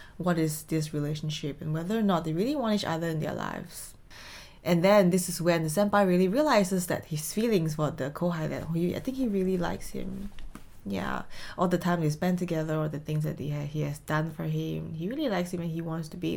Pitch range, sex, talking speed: 150-195 Hz, female, 230 wpm